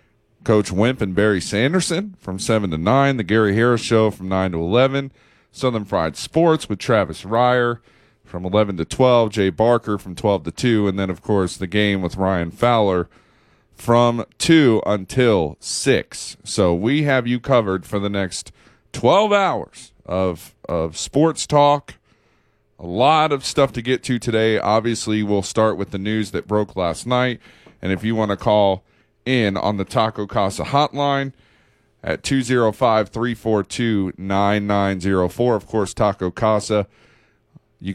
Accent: American